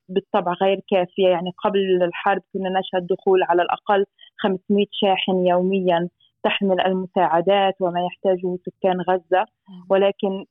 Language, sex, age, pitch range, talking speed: Arabic, female, 20-39, 180-205 Hz, 120 wpm